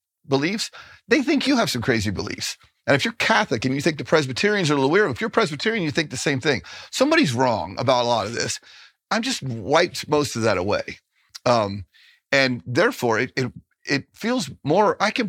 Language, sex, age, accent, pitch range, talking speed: English, male, 40-59, American, 120-185 Hz, 210 wpm